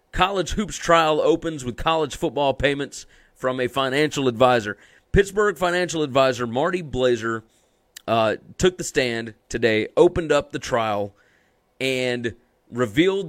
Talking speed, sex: 125 wpm, male